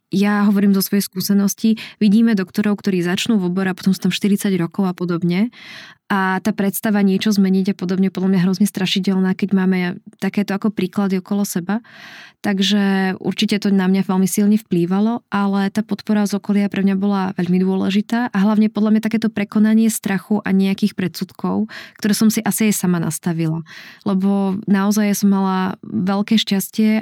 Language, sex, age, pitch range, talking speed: Czech, female, 20-39, 190-210 Hz, 165 wpm